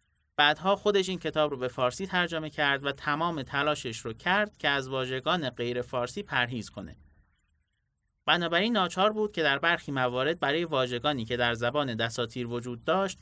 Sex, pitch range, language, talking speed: male, 120-155 Hz, Persian, 165 wpm